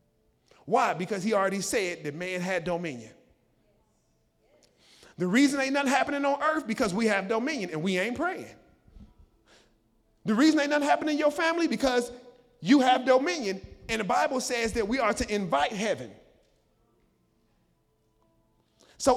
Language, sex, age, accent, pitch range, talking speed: English, male, 30-49, American, 225-295 Hz, 145 wpm